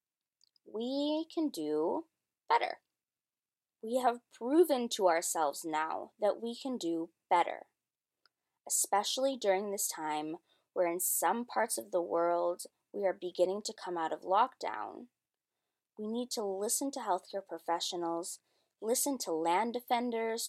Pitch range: 180-230 Hz